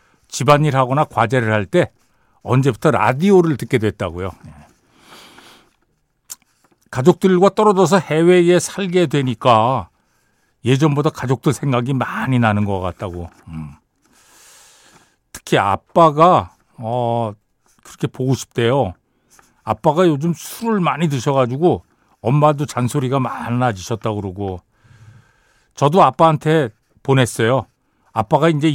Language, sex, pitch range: Korean, male, 115-175 Hz